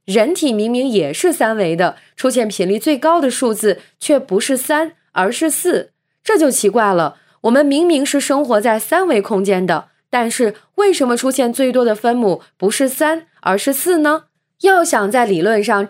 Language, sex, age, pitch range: Chinese, female, 20-39, 200-290 Hz